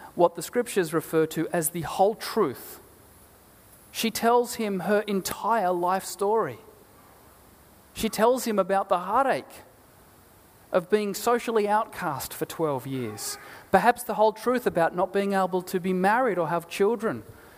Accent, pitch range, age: Australian, 165-215 Hz, 30-49